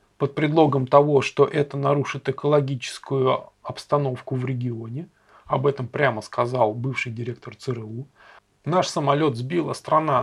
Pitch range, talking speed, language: 125-150 Hz, 125 wpm, Russian